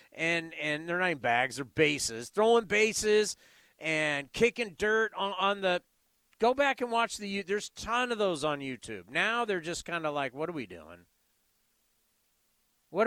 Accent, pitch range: American, 155-215 Hz